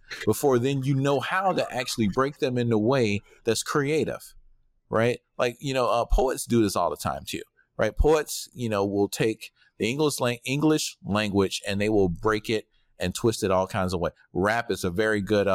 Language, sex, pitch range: English, male, 95-120 Hz